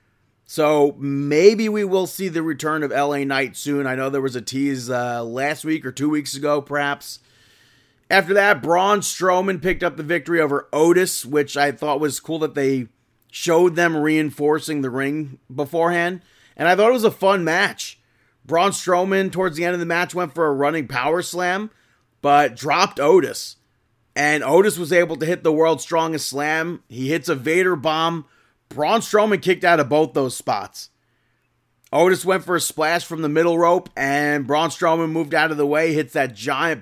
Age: 30-49